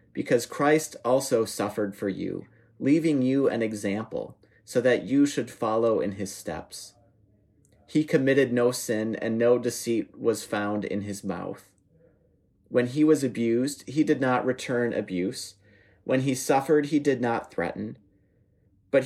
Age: 30-49